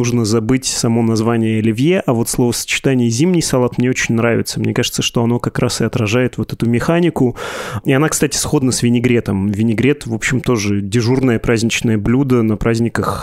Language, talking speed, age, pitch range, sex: Russian, 180 wpm, 20-39, 115-130 Hz, male